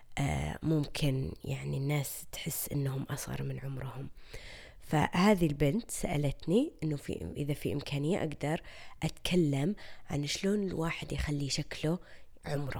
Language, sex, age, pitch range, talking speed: Arabic, female, 20-39, 135-180 Hz, 115 wpm